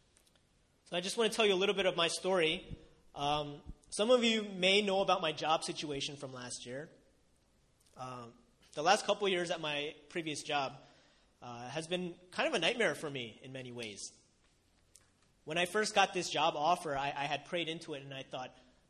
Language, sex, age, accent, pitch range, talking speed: English, male, 30-49, American, 130-190 Hz, 200 wpm